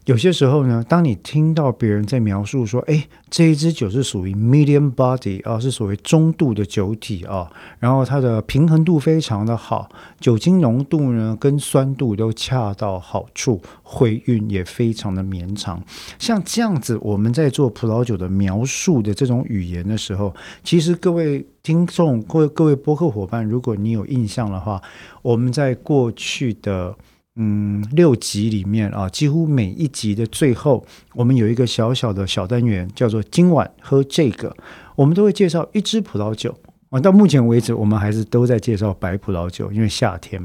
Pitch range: 105-145 Hz